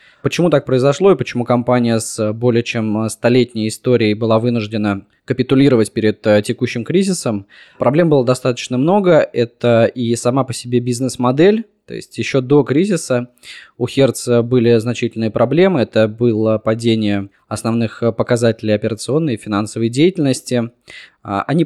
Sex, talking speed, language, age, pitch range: male, 130 wpm, Russian, 20-39, 110-130 Hz